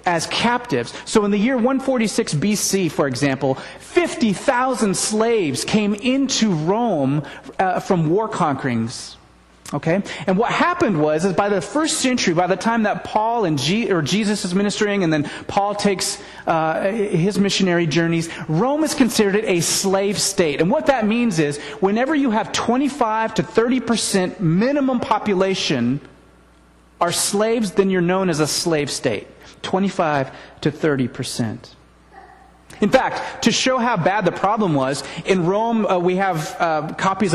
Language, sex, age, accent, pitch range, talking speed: English, male, 30-49, American, 150-215 Hz, 155 wpm